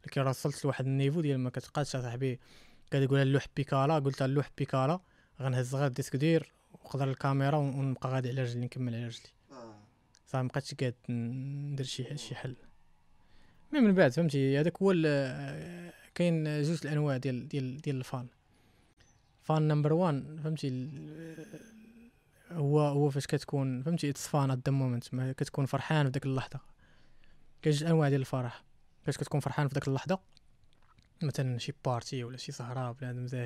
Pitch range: 130-150 Hz